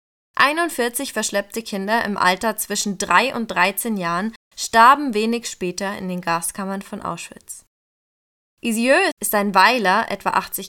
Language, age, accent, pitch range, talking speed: German, 20-39, German, 195-240 Hz, 135 wpm